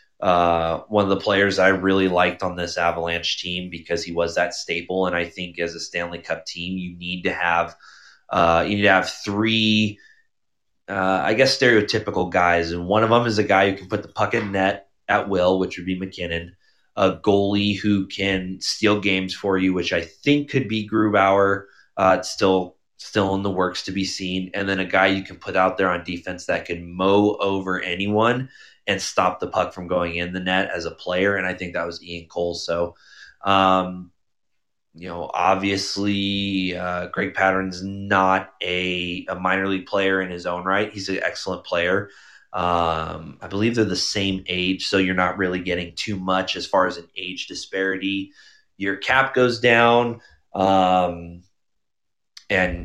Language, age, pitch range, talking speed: English, 20-39, 90-100 Hz, 190 wpm